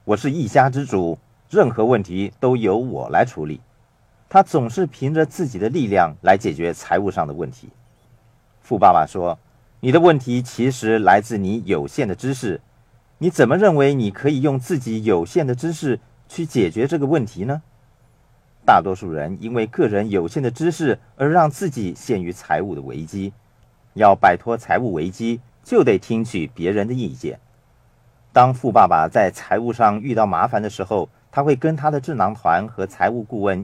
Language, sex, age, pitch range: Chinese, male, 50-69, 100-135 Hz